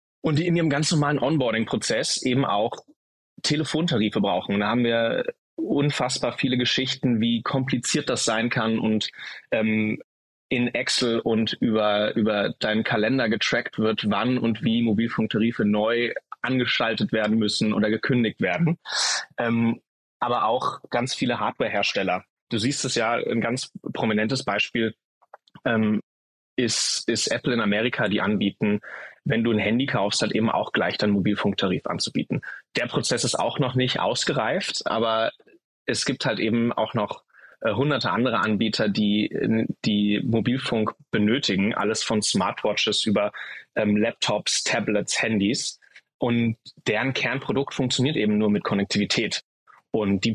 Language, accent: German, German